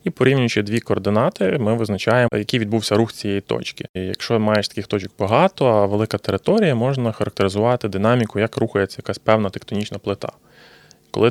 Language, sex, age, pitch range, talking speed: Ukrainian, male, 20-39, 105-125 Hz, 160 wpm